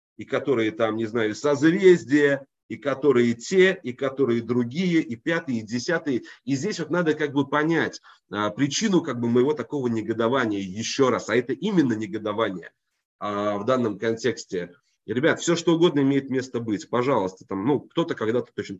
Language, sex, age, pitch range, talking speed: Russian, male, 30-49, 110-135 Hz, 165 wpm